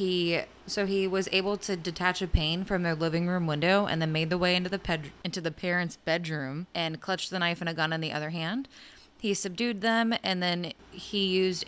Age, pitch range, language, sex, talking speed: 20-39, 165-190 Hz, English, female, 225 wpm